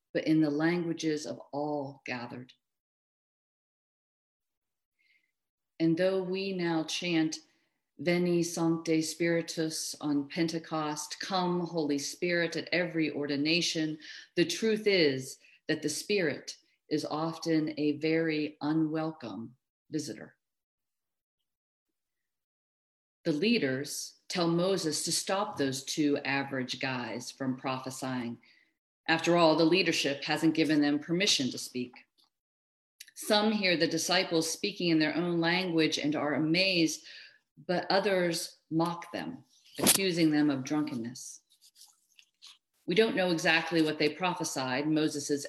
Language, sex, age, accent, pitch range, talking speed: English, female, 50-69, American, 145-170 Hz, 110 wpm